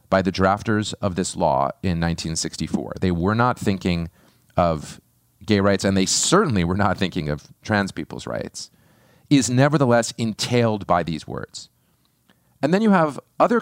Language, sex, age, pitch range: English, male, 40-59, 95-130 Hz